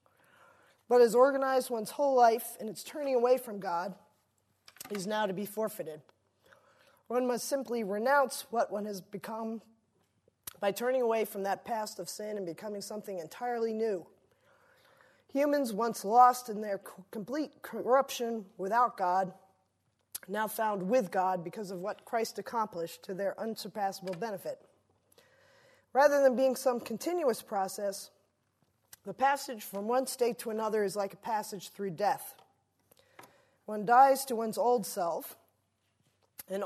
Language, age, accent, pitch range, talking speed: English, 20-39, American, 200-245 Hz, 140 wpm